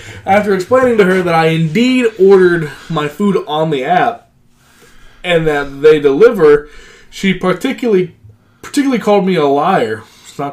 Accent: American